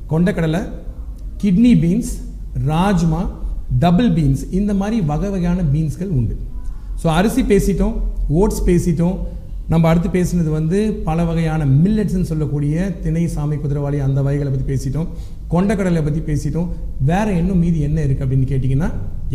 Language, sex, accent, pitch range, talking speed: Tamil, male, native, 145-190 Hz, 130 wpm